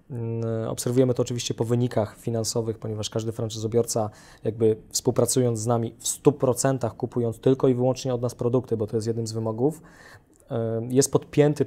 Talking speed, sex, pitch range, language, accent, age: 155 wpm, male, 115-135 Hz, Polish, native, 20-39